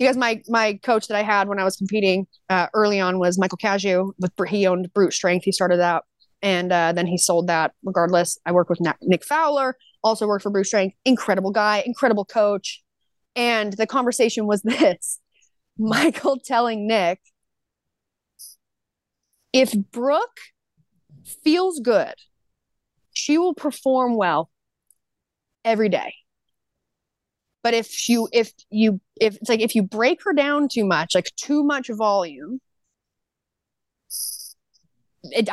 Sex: female